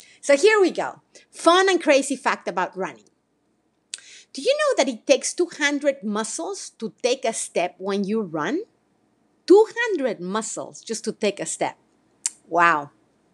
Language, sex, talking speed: English, female, 150 wpm